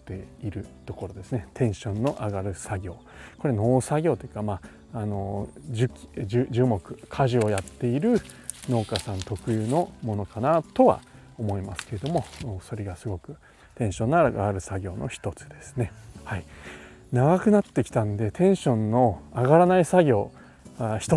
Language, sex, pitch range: Japanese, male, 105-130 Hz